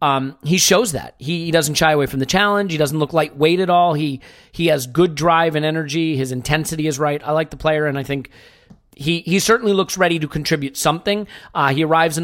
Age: 40-59